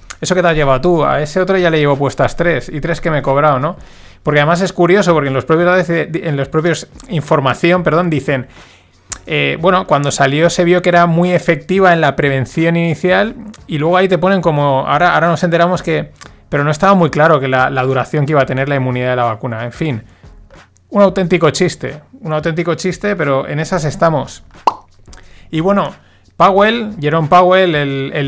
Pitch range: 135-170 Hz